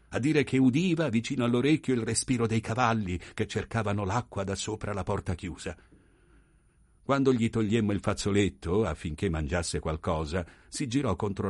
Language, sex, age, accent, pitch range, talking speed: Italian, male, 60-79, native, 90-120 Hz, 150 wpm